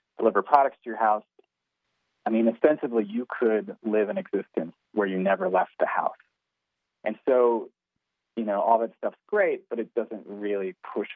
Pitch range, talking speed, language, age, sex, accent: 100-120 Hz, 170 wpm, English, 30-49, male, American